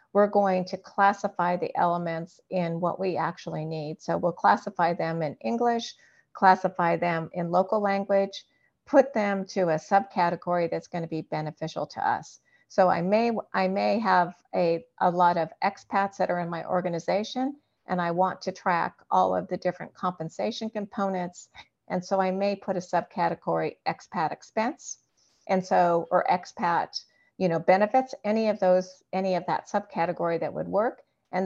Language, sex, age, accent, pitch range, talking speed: English, female, 50-69, American, 170-200 Hz, 170 wpm